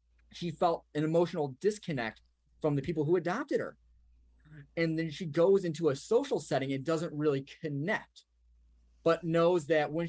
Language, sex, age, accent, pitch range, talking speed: English, male, 30-49, American, 130-170 Hz, 160 wpm